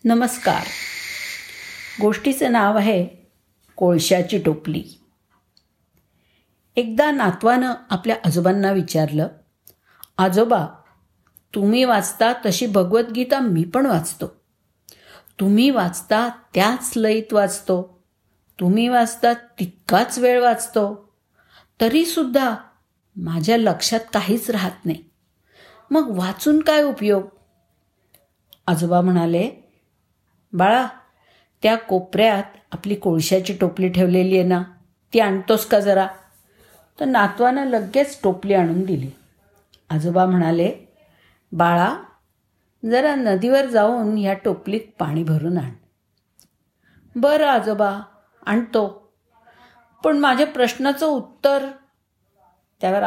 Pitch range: 185-240 Hz